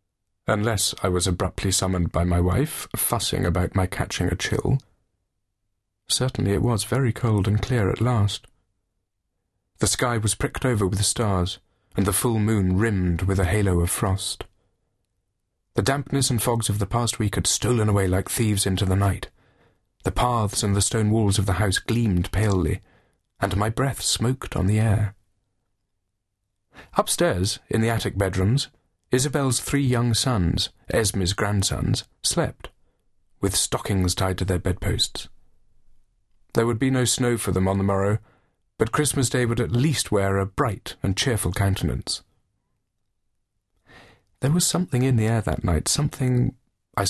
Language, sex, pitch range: English, male, 95-115 Hz